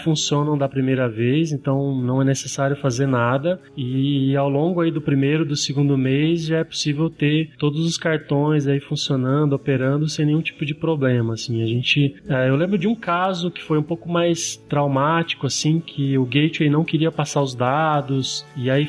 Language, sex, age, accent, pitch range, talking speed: Portuguese, male, 20-39, Brazilian, 135-160 Hz, 190 wpm